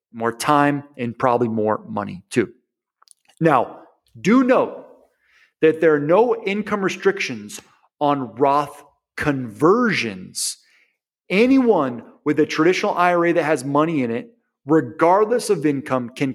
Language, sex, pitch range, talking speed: English, male, 145-215 Hz, 120 wpm